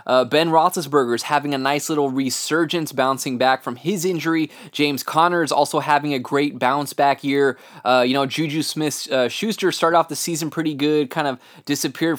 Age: 20-39